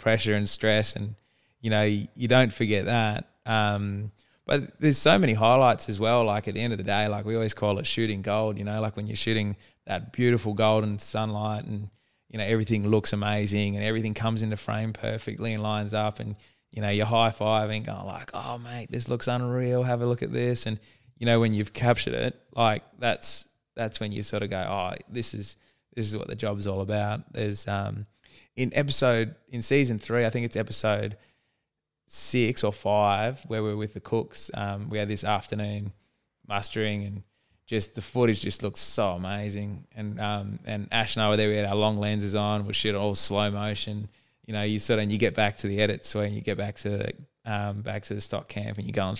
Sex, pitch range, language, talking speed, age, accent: male, 105-115 Hz, English, 220 wpm, 20-39, Australian